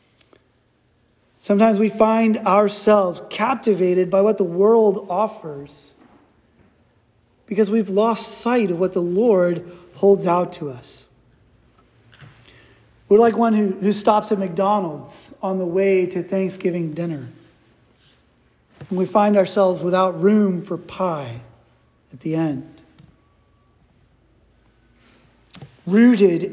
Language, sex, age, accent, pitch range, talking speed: English, male, 30-49, American, 150-215 Hz, 110 wpm